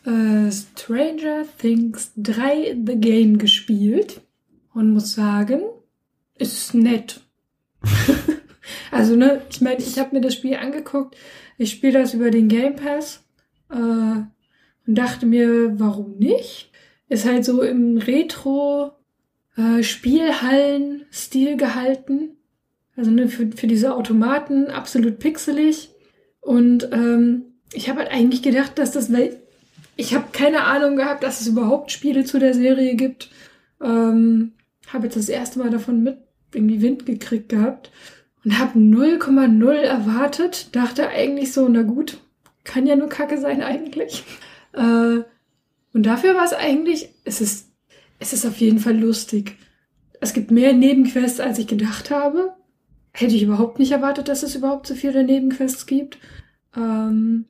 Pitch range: 230-280 Hz